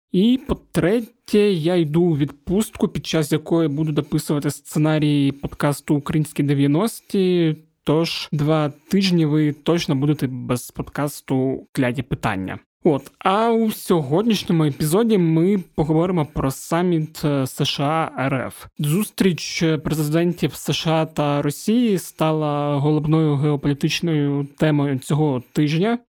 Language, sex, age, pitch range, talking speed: Ukrainian, male, 20-39, 145-175 Hz, 105 wpm